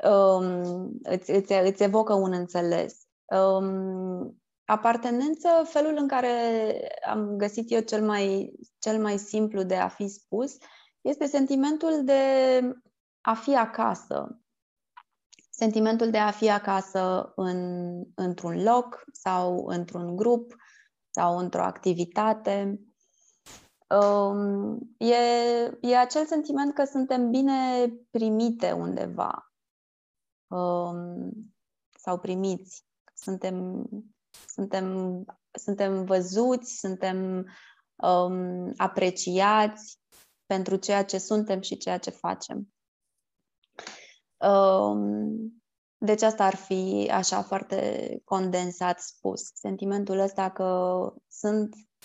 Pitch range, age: 185-235 Hz, 20-39